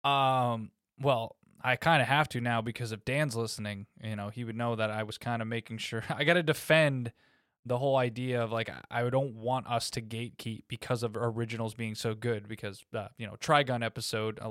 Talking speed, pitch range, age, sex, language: 215 wpm, 115-135 Hz, 20-39, male, English